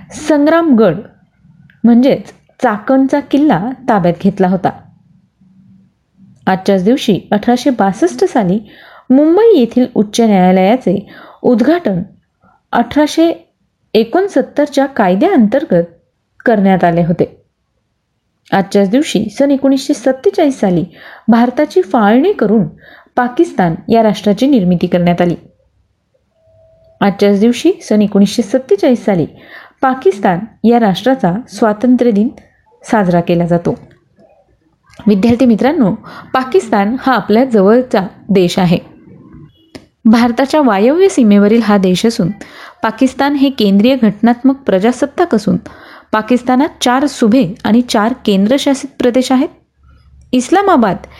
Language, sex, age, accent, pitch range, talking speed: Marathi, female, 30-49, native, 195-270 Hz, 90 wpm